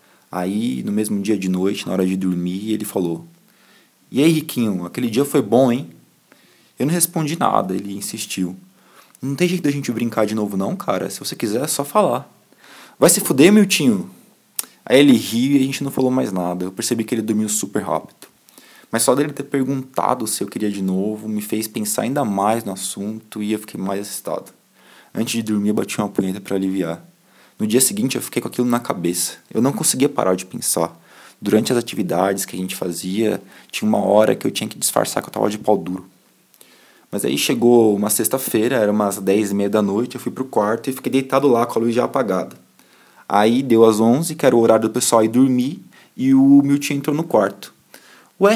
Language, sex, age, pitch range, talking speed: Portuguese, male, 20-39, 100-140 Hz, 215 wpm